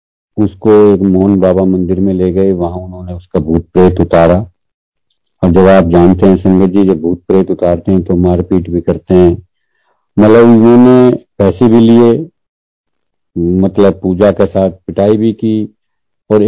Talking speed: 155 wpm